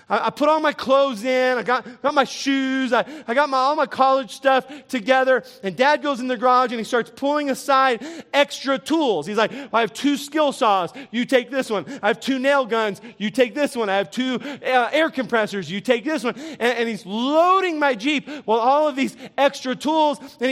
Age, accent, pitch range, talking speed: 30-49, American, 230-280 Hz, 220 wpm